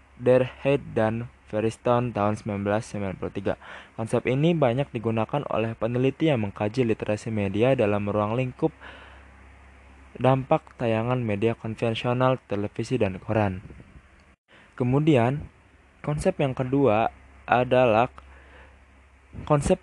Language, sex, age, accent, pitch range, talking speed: Indonesian, male, 20-39, native, 105-130 Hz, 95 wpm